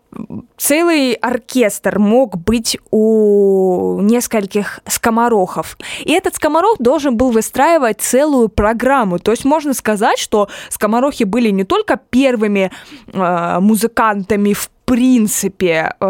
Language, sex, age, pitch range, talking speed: Russian, female, 20-39, 195-250 Hz, 105 wpm